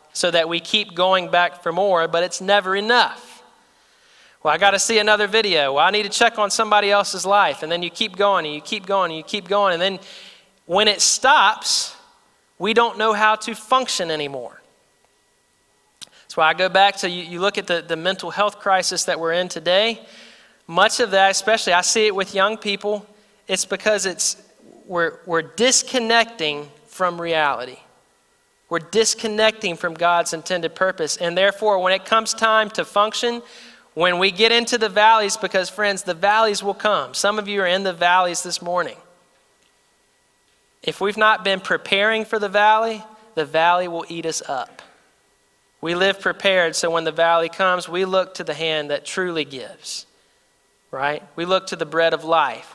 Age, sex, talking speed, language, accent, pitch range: 30-49, male, 185 wpm, English, American, 170-215 Hz